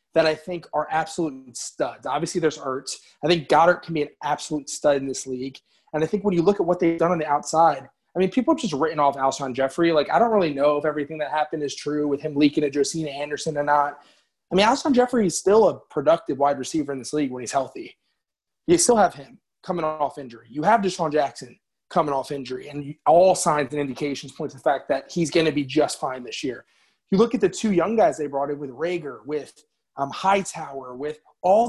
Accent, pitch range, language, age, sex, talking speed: American, 145-185 Hz, English, 20-39, male, 245 wpm